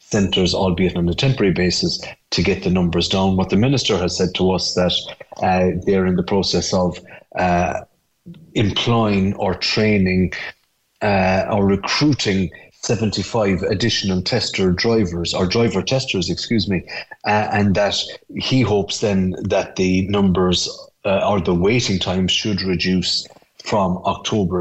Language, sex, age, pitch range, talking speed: English, male, 30-49, 90-110 Hz, 145 wpm